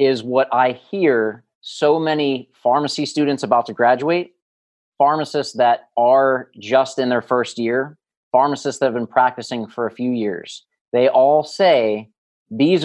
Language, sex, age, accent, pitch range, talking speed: English, male, 30-49, American, 120-150 Hz, 150 wpm